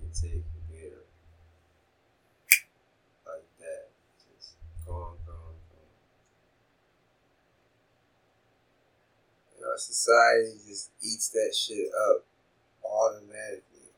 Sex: male